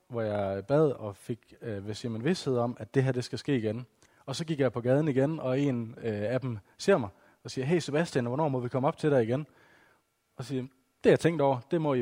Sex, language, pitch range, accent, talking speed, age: male, Danish, 115-140 Hz, native, 255 wpm, 20-39